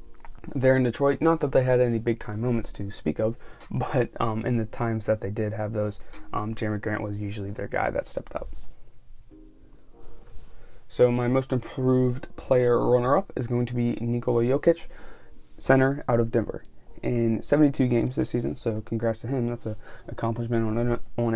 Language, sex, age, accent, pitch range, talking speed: English, male, 20-39, American, 110-125 Hz, 175 wpm